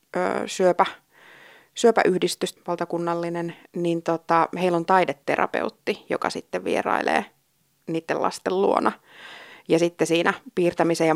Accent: native